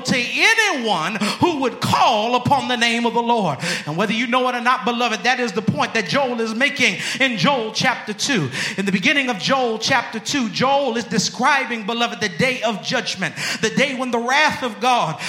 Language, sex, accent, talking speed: English, male, American, 210 wpm